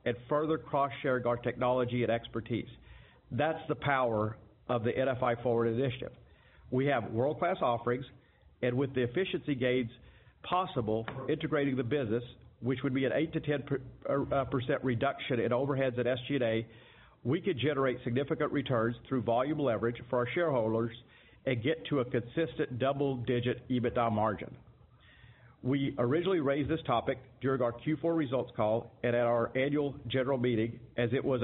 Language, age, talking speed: English, 50-69, 155 wpm